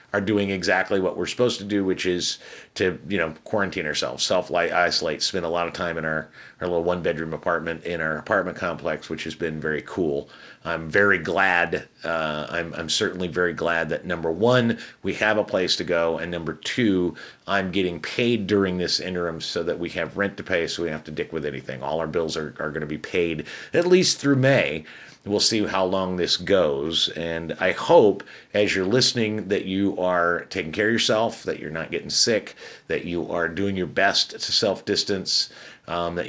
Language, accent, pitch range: English, American, 85-125 Hz